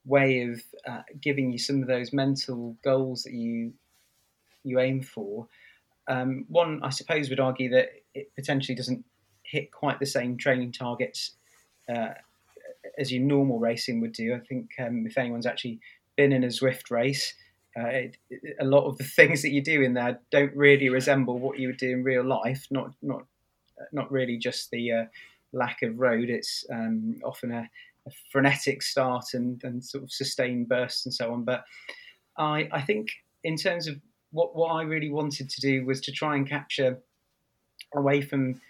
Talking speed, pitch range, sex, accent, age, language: 180 wpm, 120-140 Hz, male, British, 30-49, English